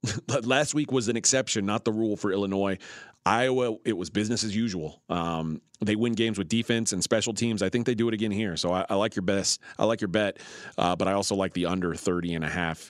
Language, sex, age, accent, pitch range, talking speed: English, male, 30-49, American, 100-125 Hz, 250 wpm